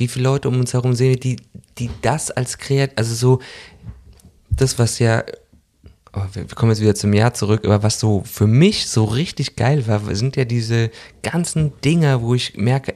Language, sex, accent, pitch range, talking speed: German, male, German, 100-125 Hz, 190 wpm